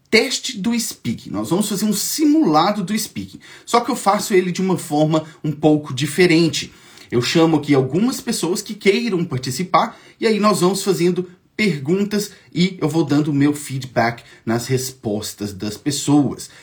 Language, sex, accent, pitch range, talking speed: English, male, Brazilian, 130-195 Hz, 165 wpm